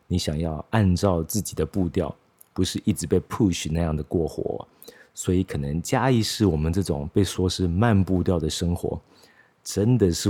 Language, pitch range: Chinese, 80-100 Hz